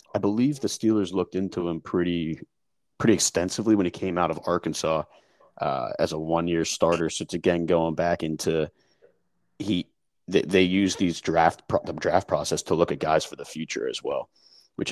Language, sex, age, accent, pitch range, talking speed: English, male, 30-49, American, 80-105 Hz, 190 wpm